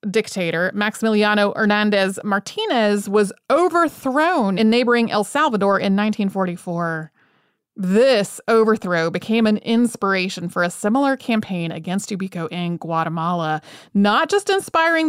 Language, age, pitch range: English, 30-49, 190-235 Hz